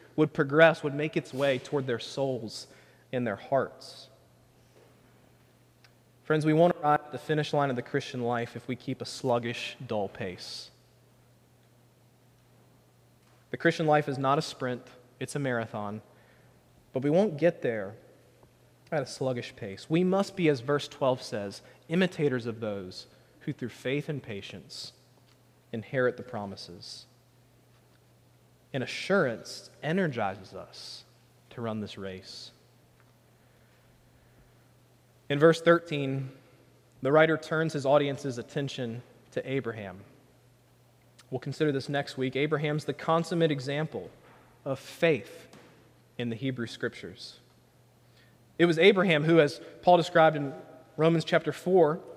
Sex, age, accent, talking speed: male, 20-39, American, 130 wpm